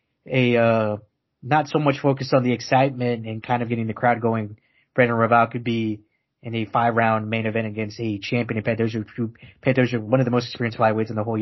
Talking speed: 215 wpm